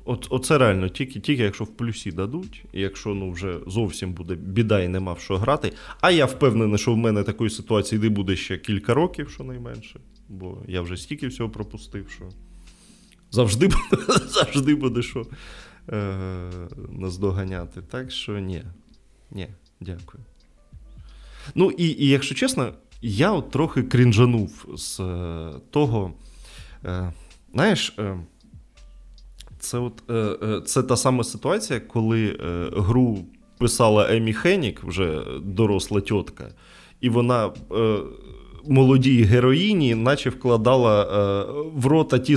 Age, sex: 20-39, male